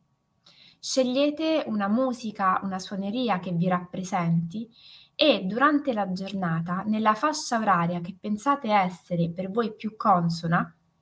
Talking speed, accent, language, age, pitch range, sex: 120 wpm, native, Italian, 20-39, 180-230 Hz, female